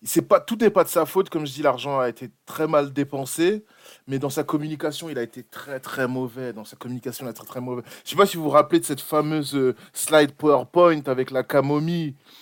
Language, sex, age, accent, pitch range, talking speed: French, male, 20-39, French, 130-155 Hz, 250 wpm